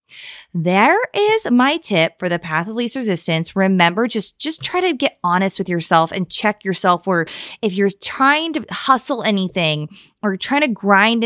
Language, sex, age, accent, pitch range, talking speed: English, female, 20-39, American, 190-245 Hz, 175 wpm